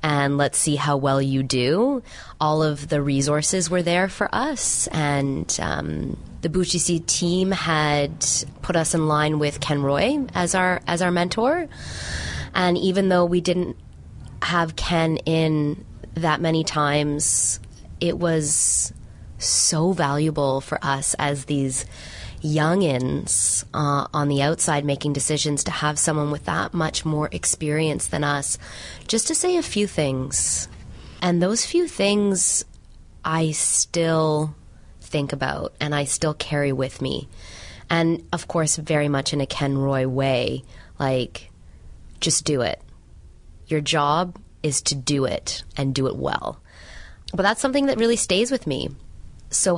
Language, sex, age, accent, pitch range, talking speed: English, female, 20-39, American, 135-170 Hz, 145 wpm